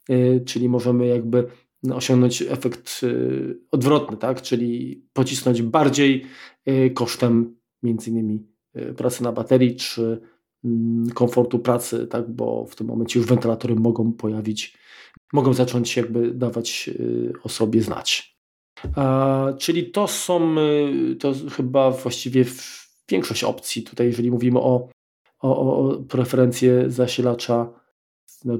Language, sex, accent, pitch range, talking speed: Polish, male, native, 120-135 Hz, 110 wpm